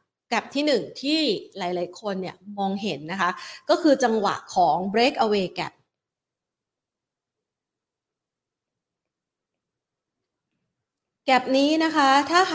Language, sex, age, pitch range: Thai, female, 30-49, 195-240 Hz